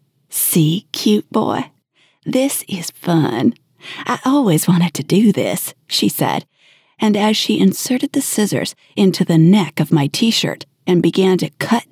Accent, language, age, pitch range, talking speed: American, English, 40-59, 150-205 Hz, 150 wpm